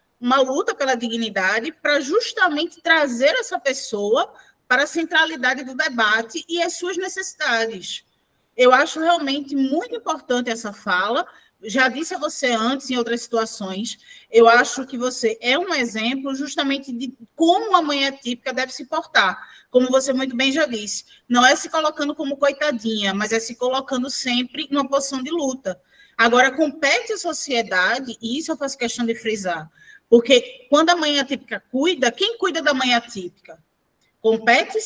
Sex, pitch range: female, 235-300 Hz